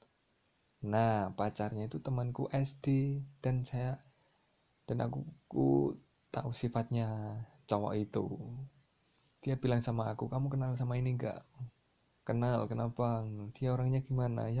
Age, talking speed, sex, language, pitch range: 20-39, 120 wpm, male, Indonesian, 110-135 Hz